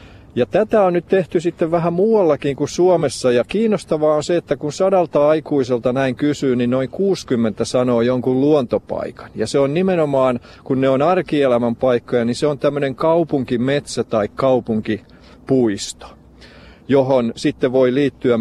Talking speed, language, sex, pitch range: 150 wpm, Finnish, male, 120-155 Hz